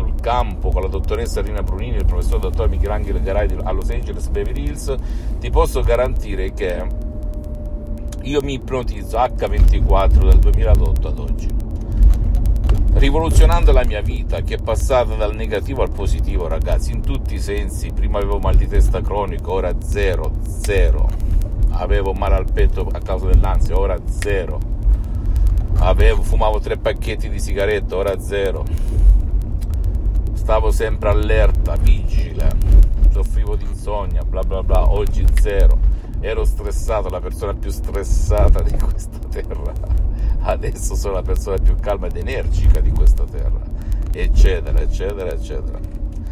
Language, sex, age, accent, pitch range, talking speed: Italian, male, 50-69, native, 75-95 Hz, 135 wpm